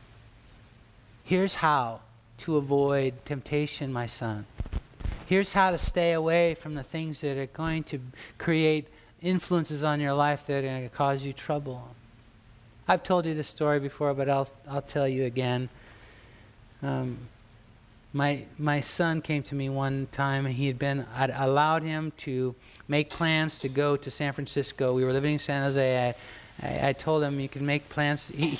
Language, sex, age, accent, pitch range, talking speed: English, male, 50-69, American, 125-150 Hz, 170 wpm